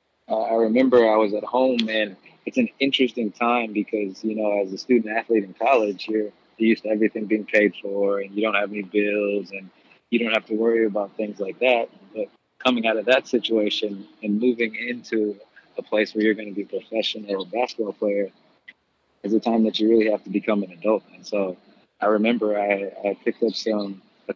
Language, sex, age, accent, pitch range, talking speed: English, male, 20-39, American, 100-110 Hz, 210 wpm